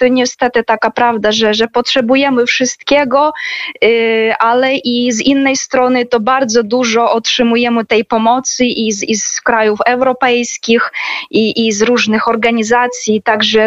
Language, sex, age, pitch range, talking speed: Polish, female, 20-39, 215-255 Hz, 130 wpm